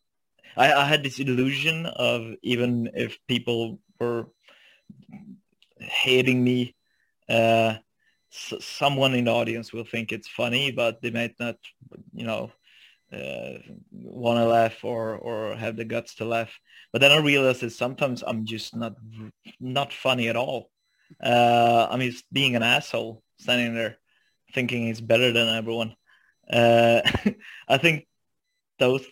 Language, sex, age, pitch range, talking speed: English, male, 20-39, 115-135 Hz, 140 wpm